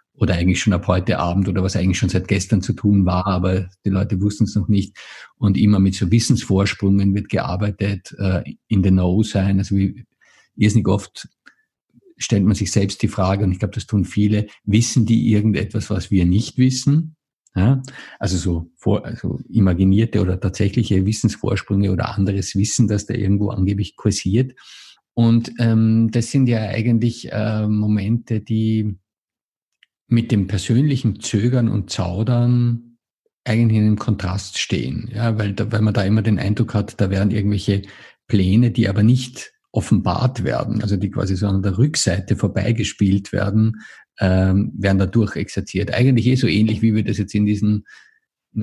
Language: German